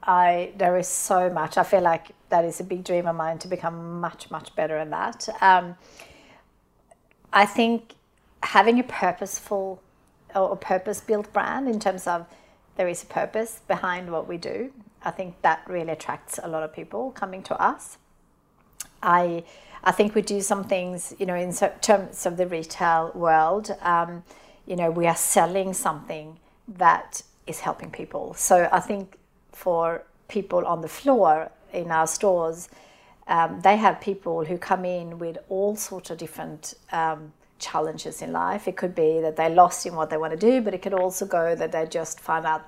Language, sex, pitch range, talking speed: English, female, 165-195 Hz, 180 wpm